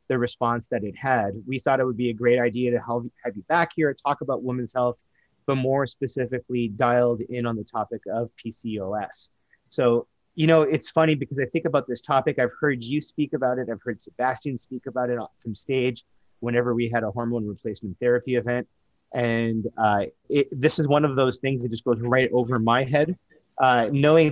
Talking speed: 205 wpm